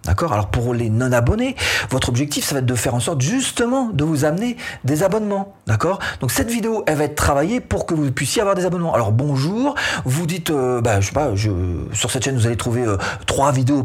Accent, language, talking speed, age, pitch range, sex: French, French, 230 wpm, 40-59, 110-155 Hz, male